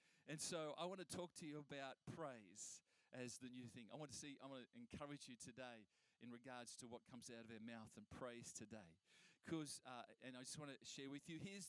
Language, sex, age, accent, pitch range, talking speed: English, male, 40-59, Australian, 130-165 Hz, 240 wpm